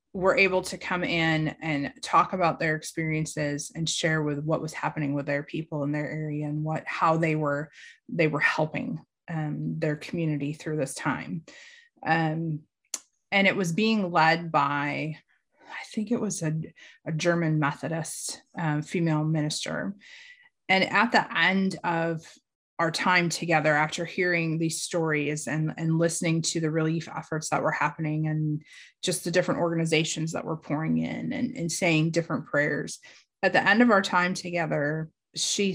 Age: 30-49